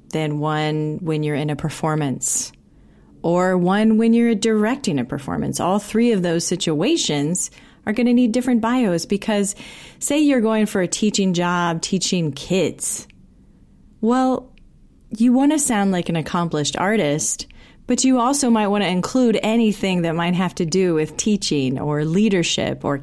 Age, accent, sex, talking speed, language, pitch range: 30-49, American, female, 155 wpm, English, 160-225 Hz